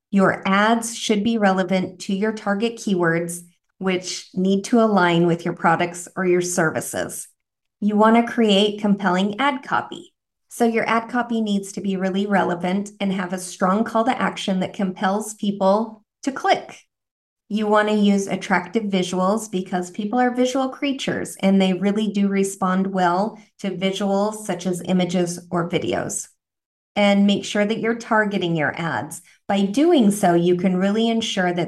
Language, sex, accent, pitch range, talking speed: English, female, American, 185-210 Hz, 165 wpm